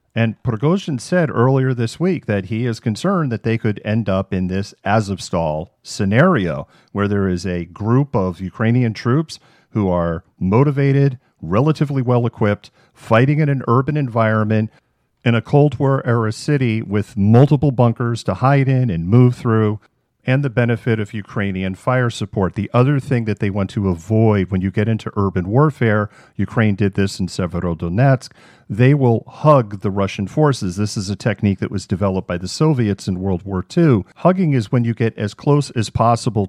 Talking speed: 175 wpm